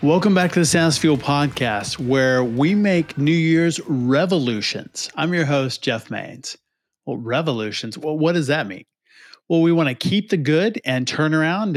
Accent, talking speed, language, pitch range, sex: American, 175 wpm, English, 125-160 Hz, male